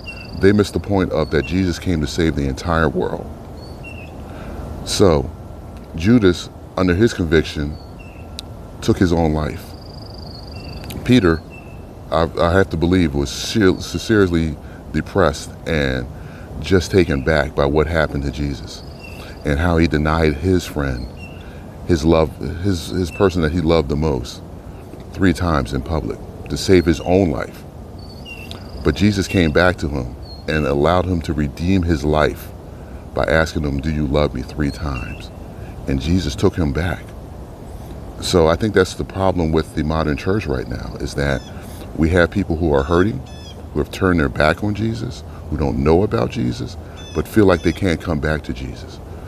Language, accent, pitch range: English, American, 75-95 Hz